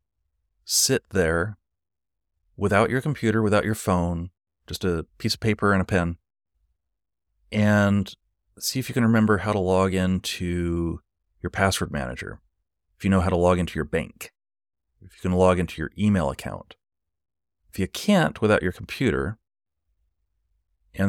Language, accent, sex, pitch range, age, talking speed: English, American, male, 80-100 Hz, 30-49, 150 wpm